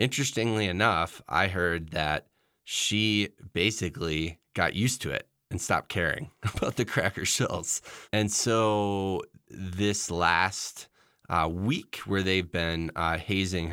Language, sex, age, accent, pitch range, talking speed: English, male, 20-39, American, 80-95 Hz, 125 wpm